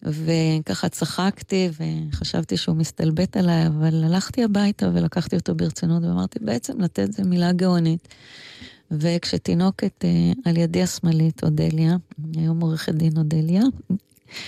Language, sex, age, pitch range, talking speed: Hebrew, female, 30-49, 160-180 Hz, 110 wpm